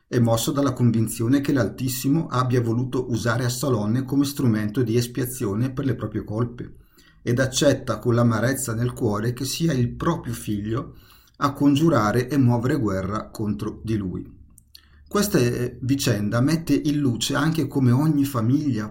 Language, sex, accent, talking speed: Italian, male, native, 145 wpm